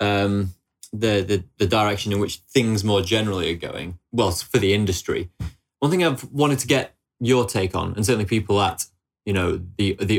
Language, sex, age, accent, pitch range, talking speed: English, male, 20-39, British, 90-105 Hz, 195 wpm